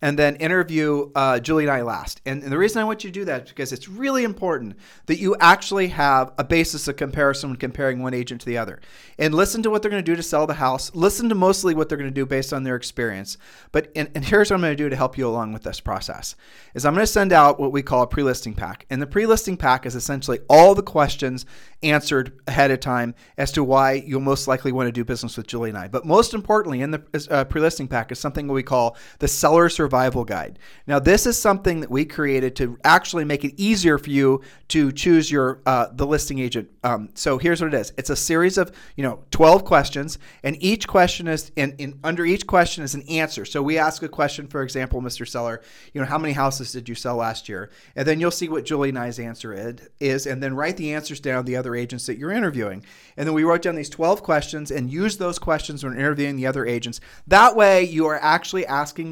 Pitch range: 130-165 Hz